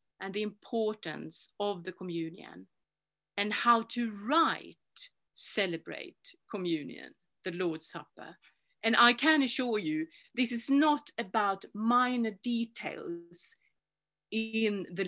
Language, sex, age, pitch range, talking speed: English, female, 50-69, 185-255 Hz, 110 wpm